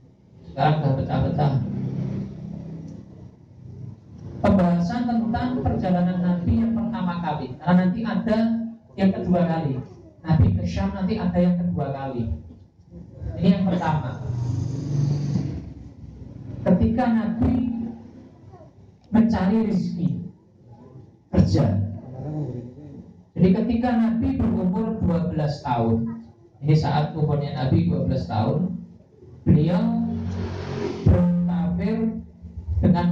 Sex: male